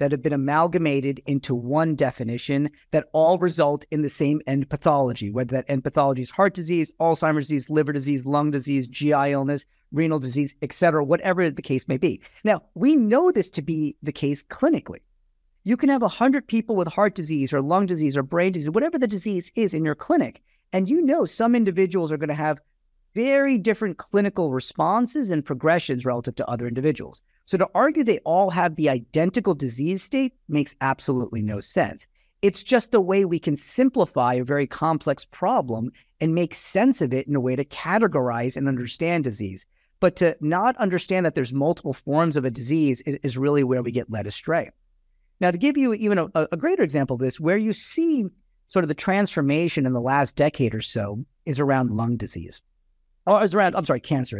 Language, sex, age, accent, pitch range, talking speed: English, male, 40-59, American, 135-185 Hz, 195 wpm